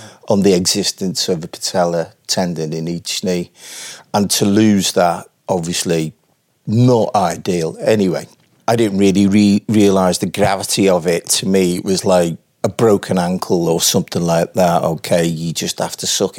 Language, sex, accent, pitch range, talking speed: English, male, British, 85-100 Hz, 165 wpm